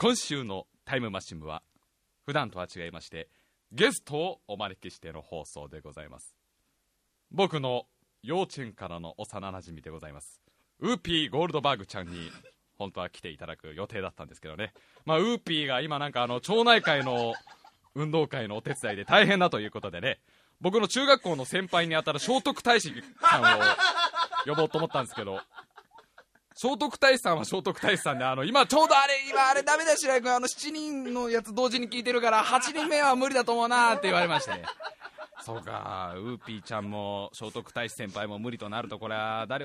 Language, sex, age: Japanese, male, 20-39